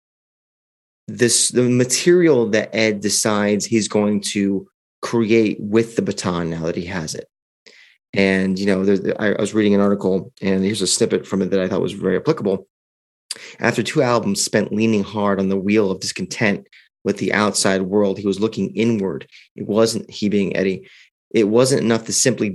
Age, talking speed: 30-49, 180 wpm